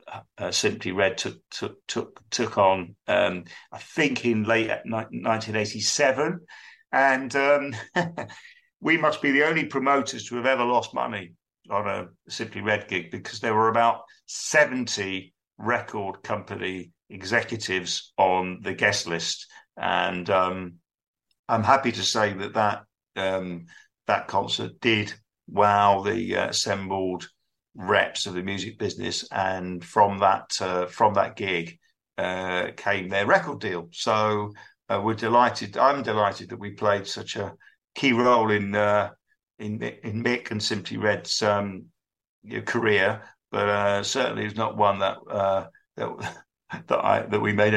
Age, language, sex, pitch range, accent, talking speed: 50-69, English, male, 95-115 Hz, British, 140 wpm